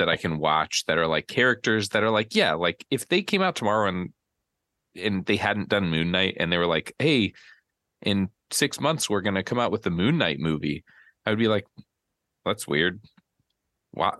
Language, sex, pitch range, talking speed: English, male, 80-110 Hz, 210 wpm